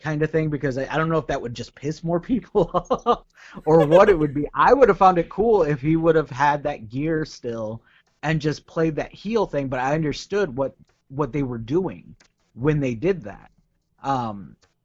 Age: 30-49